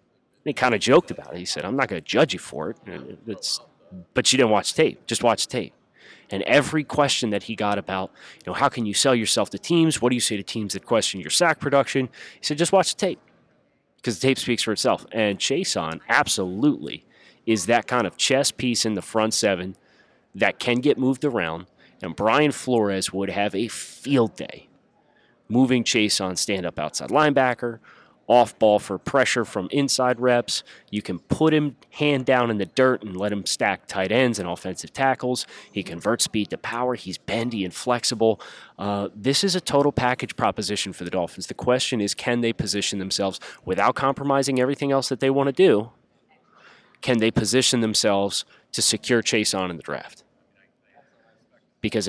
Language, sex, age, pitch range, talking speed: English, male, 30-49, 100-135 Hz, 195 wpm